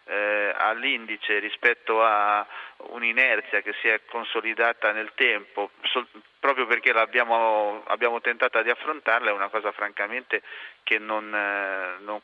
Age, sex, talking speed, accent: 30-49, male, 120 wpm, native